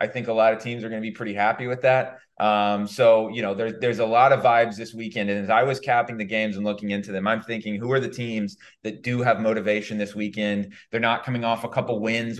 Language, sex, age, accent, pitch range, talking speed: English, male, 20-39, American, 105-125 Hz, 265 wpm